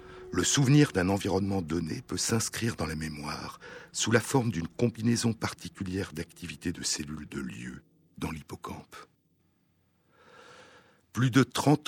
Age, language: 60-79, French